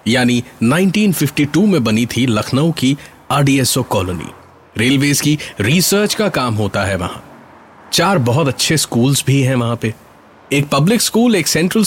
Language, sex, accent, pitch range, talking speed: Hindi, male, native, 105-160 Hz, 150 wpm